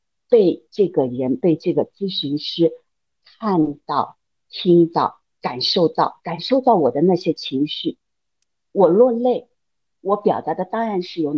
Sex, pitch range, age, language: female, 155-235 Hz, 50-69, Chinese